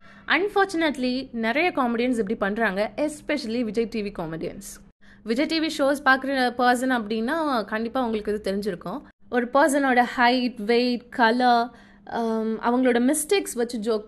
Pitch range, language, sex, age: 240-315 Hz, Tamil, female, 20-39